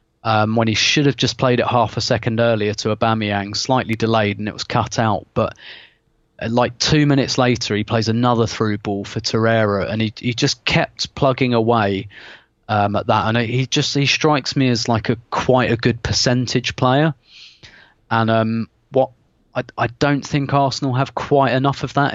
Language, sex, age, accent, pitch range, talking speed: English, male, 20-39, British, 110-130 Hz, 190 wpm